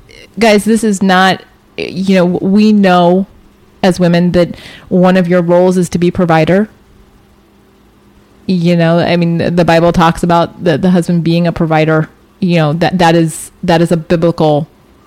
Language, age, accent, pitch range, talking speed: English, 30-49, American, 170-195 Hz, 165 wpm